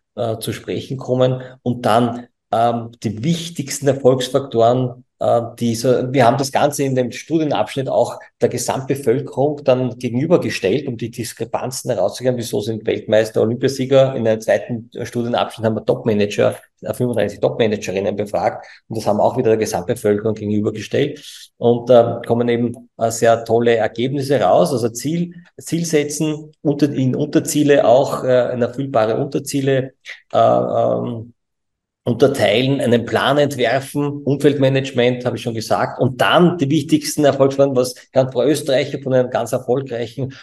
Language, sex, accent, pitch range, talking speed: German, male, Austrian, 115-140 Hz, 140 wpm